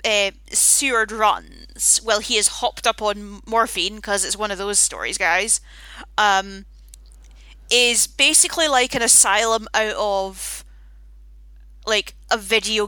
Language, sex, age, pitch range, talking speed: English, female, 10-29, 180-255 Hz, 130 wpm